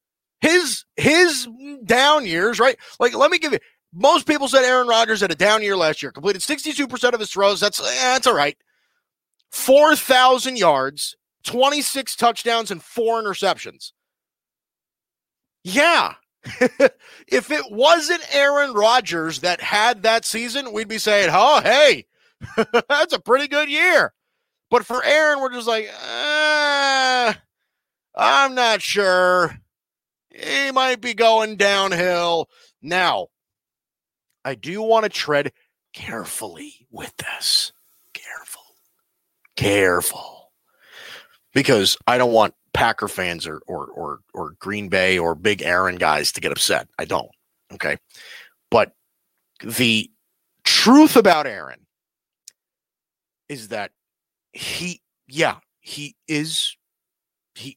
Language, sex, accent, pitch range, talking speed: English, male, American, 175-280 Hz, 125 wpm